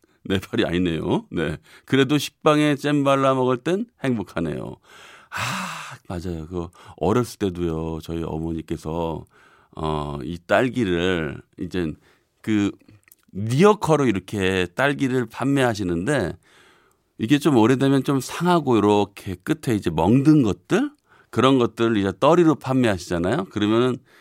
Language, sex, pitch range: Korean, male, 95-135 Hz